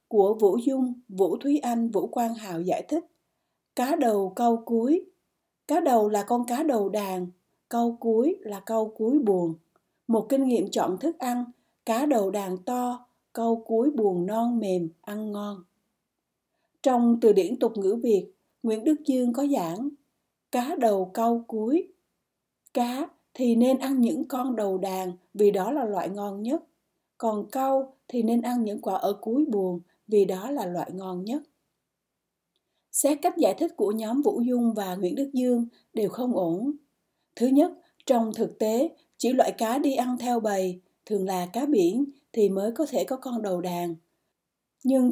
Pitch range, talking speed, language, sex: 205-270 Hz, 175 wpm, Vietnamese, female